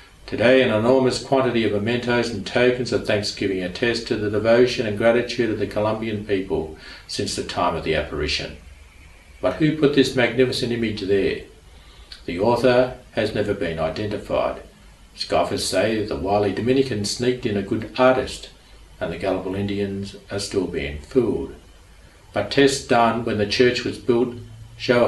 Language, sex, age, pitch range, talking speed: English, male, 50-69, 100-125 Hz, 160 wpm